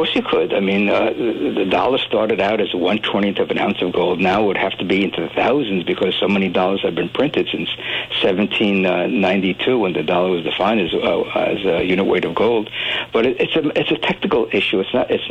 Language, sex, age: English, male, 60-79